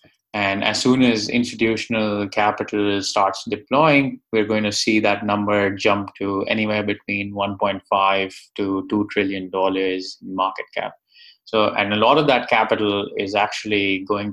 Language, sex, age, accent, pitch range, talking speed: English, male, 20-39, Indian, 100-120 Hz, 140 wpm